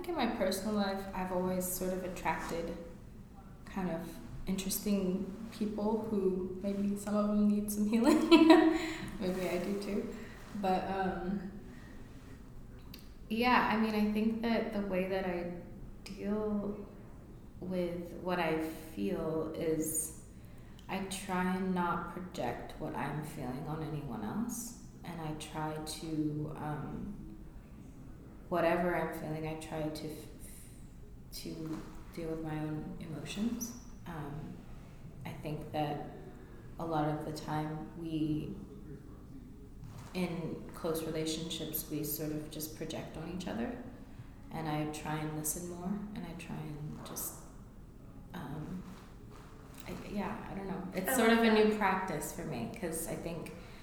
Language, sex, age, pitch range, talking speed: English, female, 20-39, 155-195 Hz, 135 wpm